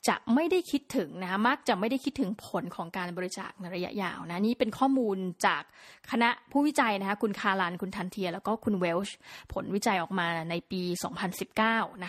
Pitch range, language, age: 195-255 Hz, Thai, 20-39